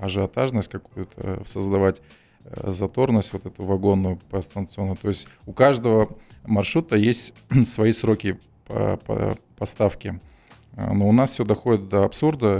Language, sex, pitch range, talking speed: Russian, male, 95-115 Hz, 120 wpm